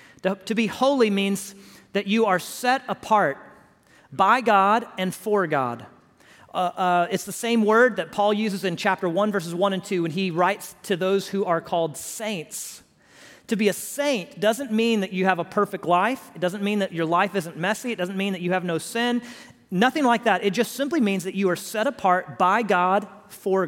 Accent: American